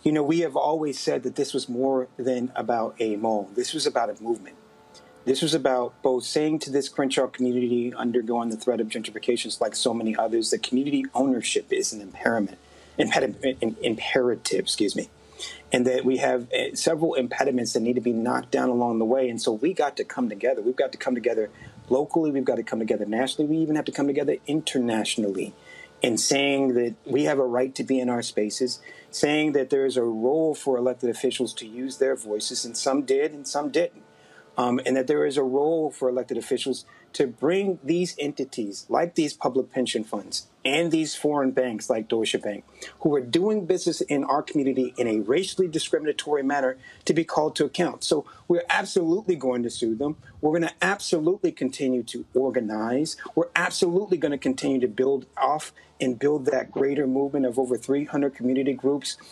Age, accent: 40-59, American